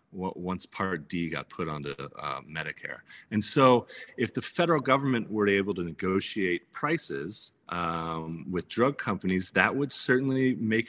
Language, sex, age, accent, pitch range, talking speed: English, male, 30-49, American, 90-115 Hz, 150 wpm